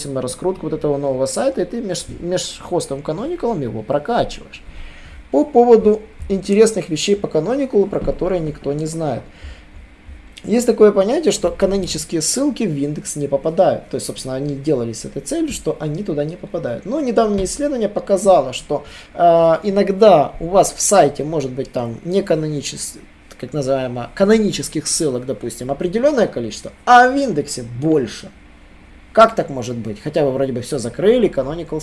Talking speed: 160 wpm